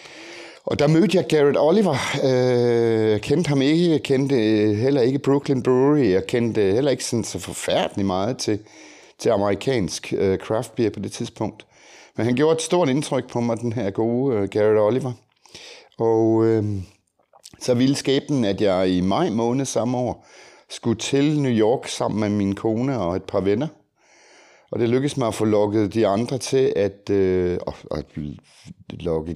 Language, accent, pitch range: Danish, native, 105-135 Hz